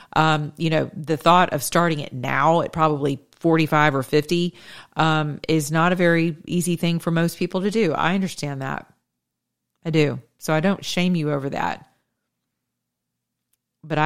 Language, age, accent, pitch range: English, 40-59, American, 145-170 Hz